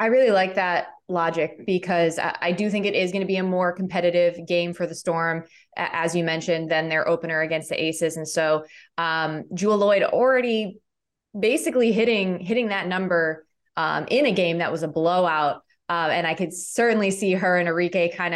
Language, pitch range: English, 170-205 Hz